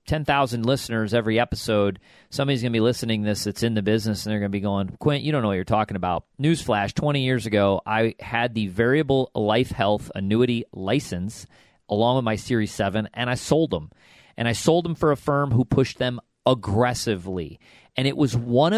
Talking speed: 210 wpm